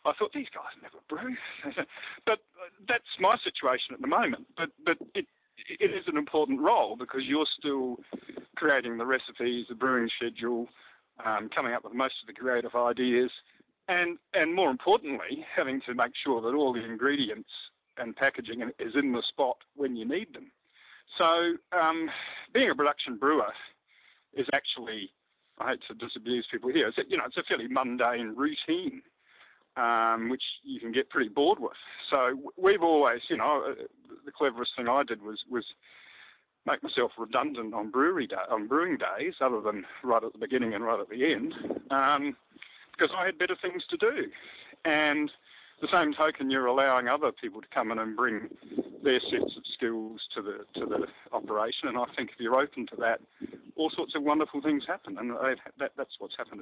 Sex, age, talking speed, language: male, 50-69, 185 wpm, English